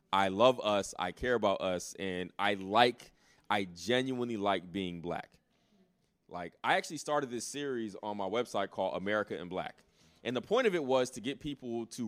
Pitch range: 100-150 Hz